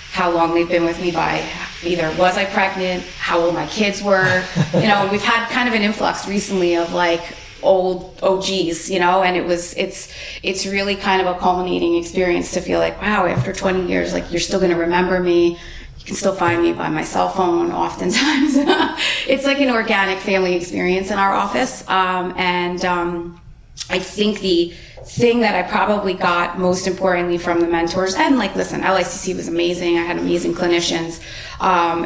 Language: English